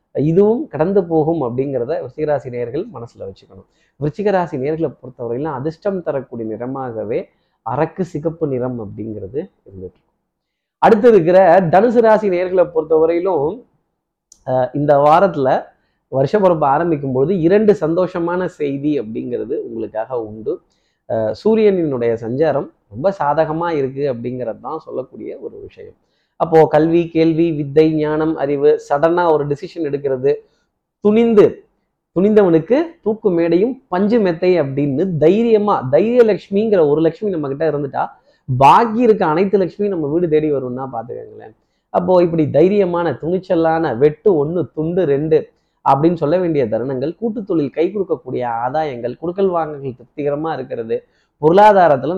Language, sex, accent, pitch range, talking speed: Tamil, male, native, 140-195 Hz, 115 wpm